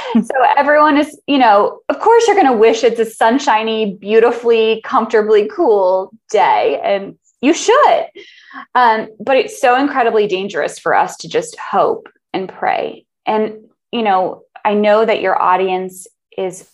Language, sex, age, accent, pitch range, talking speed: English, female, 20-39, American, 185-245 Hz, 155 wpm